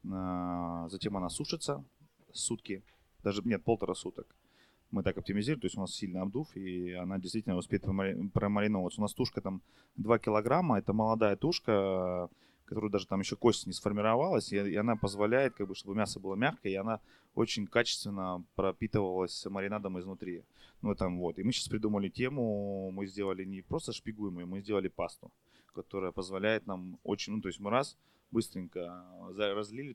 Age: 20-39